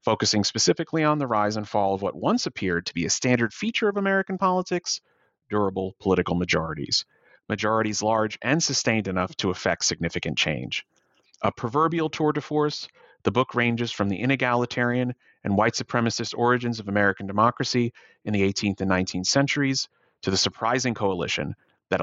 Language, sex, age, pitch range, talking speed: English, male, 30-49, 95-130 Hz, 165 wpm